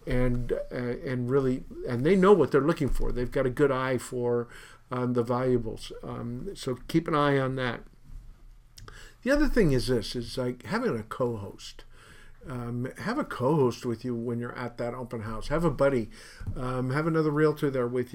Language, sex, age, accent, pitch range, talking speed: English, male, 50-69, American, 125-155 Hz, 185 wpm